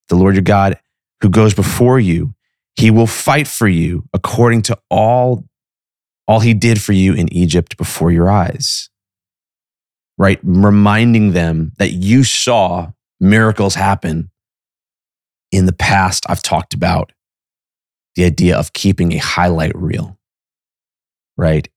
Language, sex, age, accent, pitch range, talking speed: English, male, 30-49, American, 85-105 Hz, 130 wpm